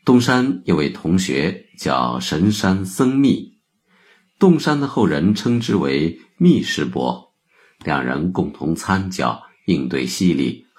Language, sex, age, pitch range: Chinese, male, 50-69, 85-130 Hz